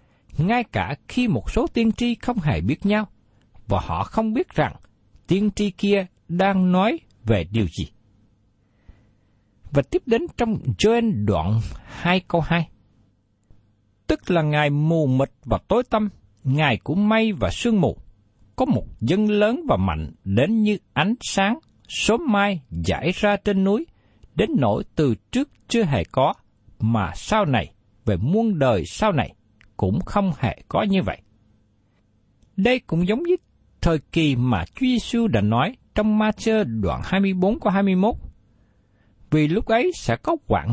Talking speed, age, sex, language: 155 wpm, 60-79, male, Vietnamese